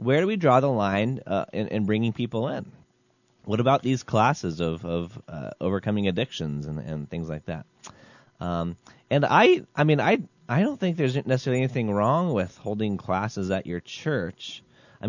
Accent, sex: American, male